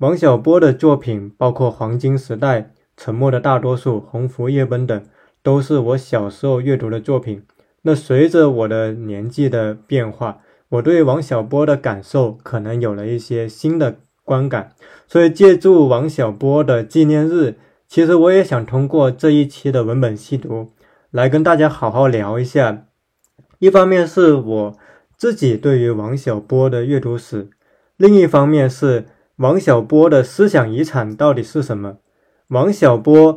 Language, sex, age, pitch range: Chinese, male, 20-39, 115-155 Hz